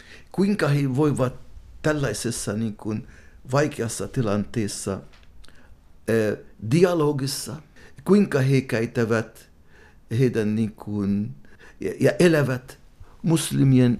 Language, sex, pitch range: Finnish, male, 110-140 Hz